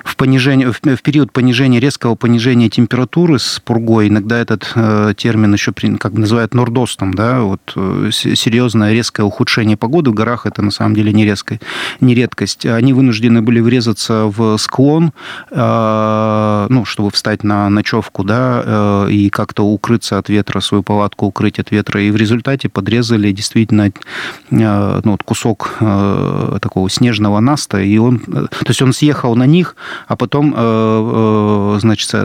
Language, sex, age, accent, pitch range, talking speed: Russian, male, 30-49, native, 105-120 Hz, 155 wpm